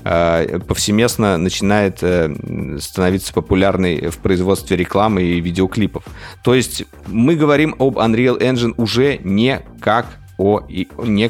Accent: native